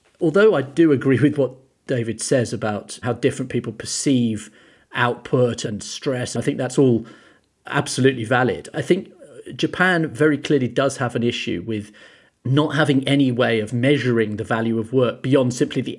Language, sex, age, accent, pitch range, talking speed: English, male, 40-59, British, 115-145 Hz, 170 wpm